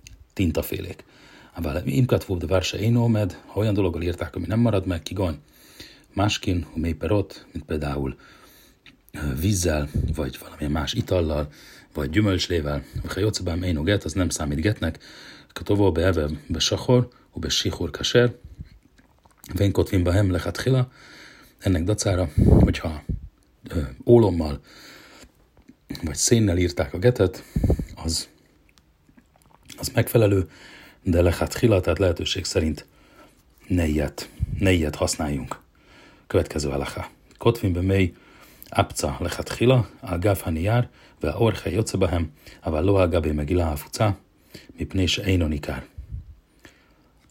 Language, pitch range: Hungarian, 80-100 Hz